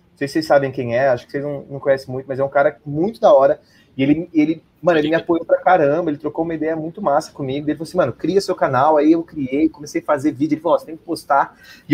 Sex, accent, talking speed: male, Brazilian, 290 wpm